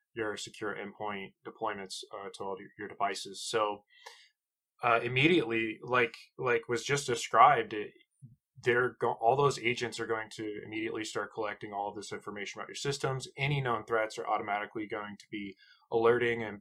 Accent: American